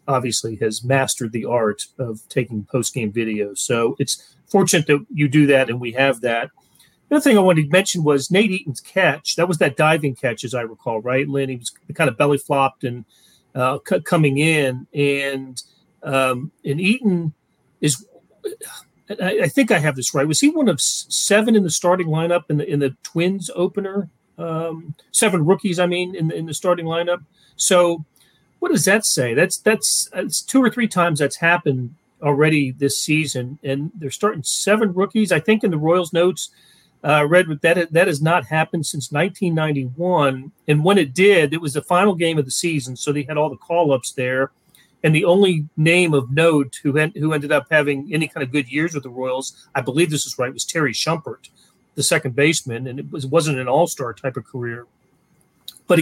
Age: 40-59